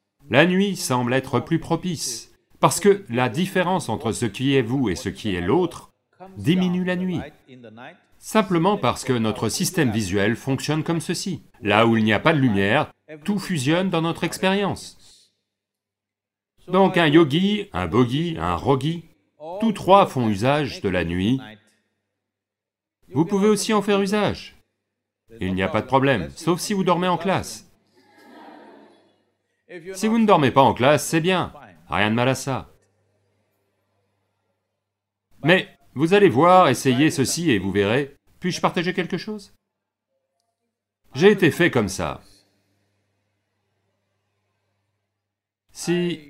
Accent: French